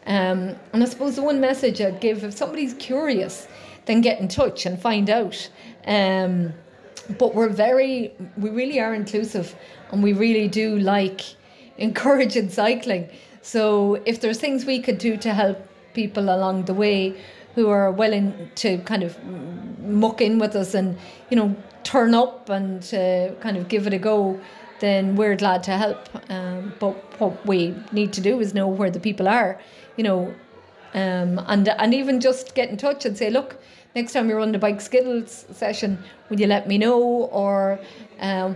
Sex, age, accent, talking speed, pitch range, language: female, 30-49, Irish, 180 wpm, 195-235 Hz, English